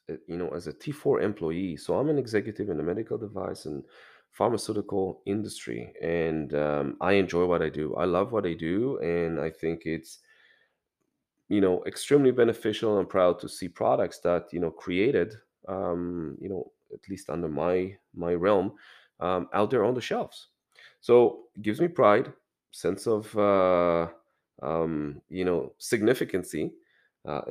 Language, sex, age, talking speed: English, male, 30-49, 160 wpm